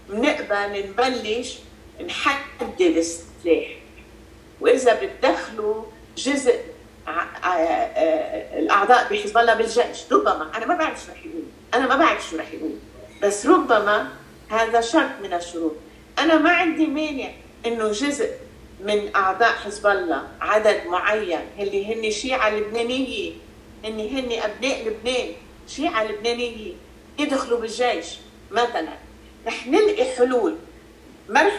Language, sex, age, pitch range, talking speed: Arabic, female, 50-69, 215-315 Hz, 120 wpm